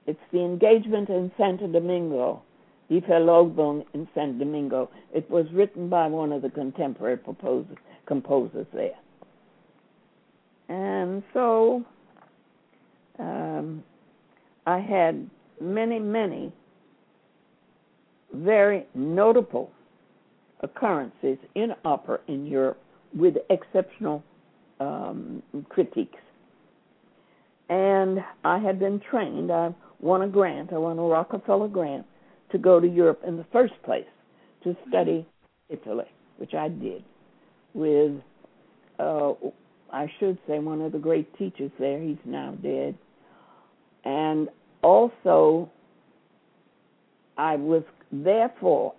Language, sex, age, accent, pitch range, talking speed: English, female, 60-79, American, 155-205 Hz, 105 wpm